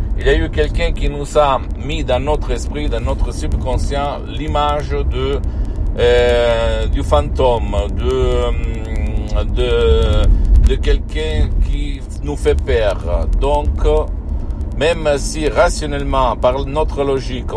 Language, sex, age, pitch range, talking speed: Italian, male, 60-79, 75-105 Hz, 120 wpm